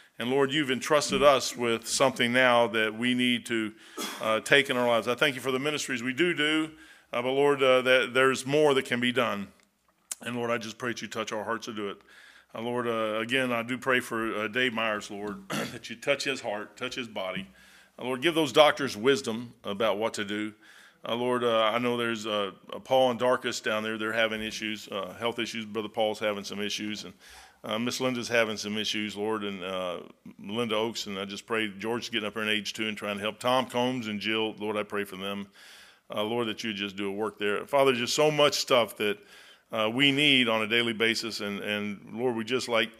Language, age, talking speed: English, 40-59, 235 wpm